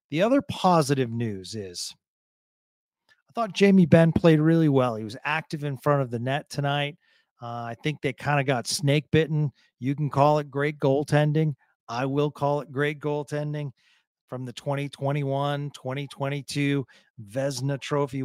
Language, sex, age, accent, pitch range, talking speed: English, male, 40-59, American, 130-150 Hz, 155 wpm